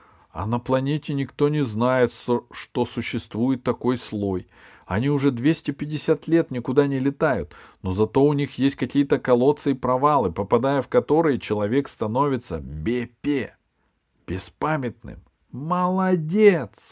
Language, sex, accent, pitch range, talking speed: Russian, male, native, 115-145 Hz, 120 wpm